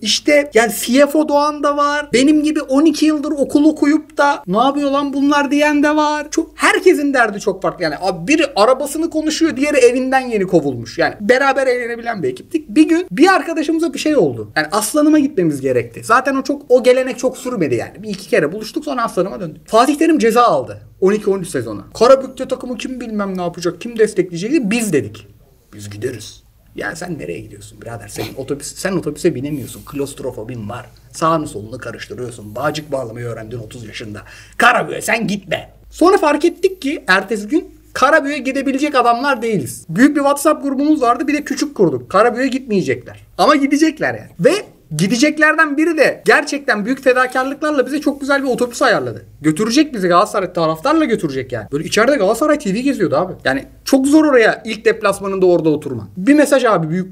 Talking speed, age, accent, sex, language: 175 wpm, 30-49, native, male, Turkish